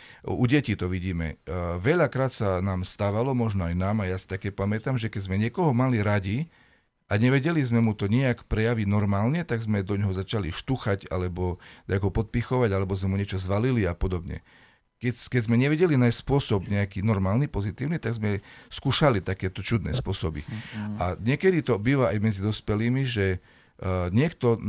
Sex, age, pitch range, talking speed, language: male, 40-59, 100-125 Hz, 170 wpm, Slovak